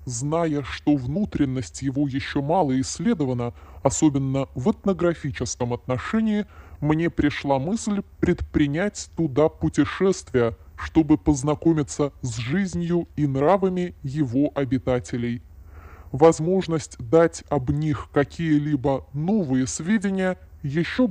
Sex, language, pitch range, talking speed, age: female, Russian, 130-180 Hz, 95 wpm, 20-39